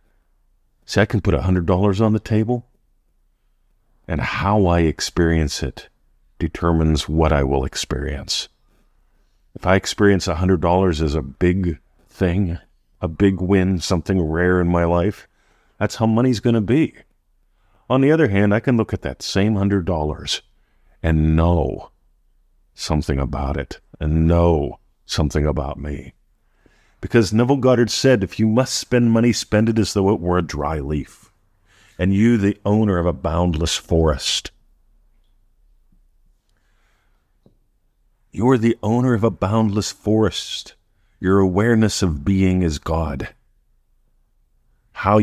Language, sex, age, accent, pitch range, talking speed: English, male, 50-69, American, 80-105 Hz, 135 wpm